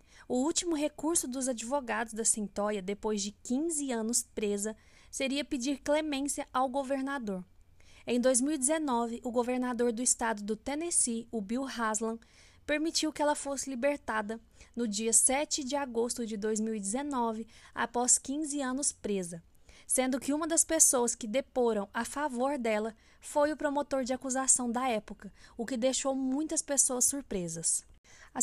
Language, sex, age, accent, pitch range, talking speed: Portuguese, female, 20-39, Brazilian, 225-285 Hz, 145 wpm